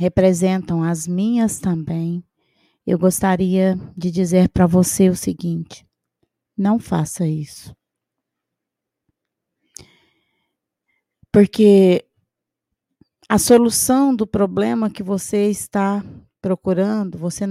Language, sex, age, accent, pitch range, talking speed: Portuguese, female, 20-39, Brazilian, 170-215 Hz, 85 wpm